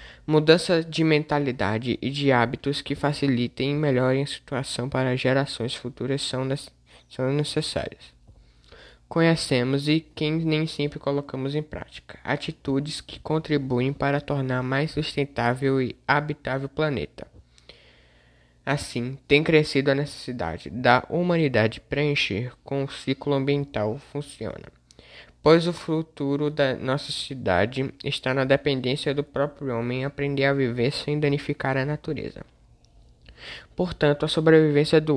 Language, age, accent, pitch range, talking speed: Portuguese, 20-39, Brazilian, 125-150 Hz, 125 wpm